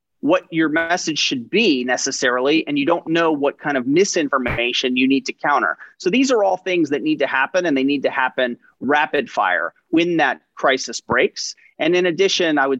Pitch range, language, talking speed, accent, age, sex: 140-225 Hz, English, 200 wpm, American, 30-49, male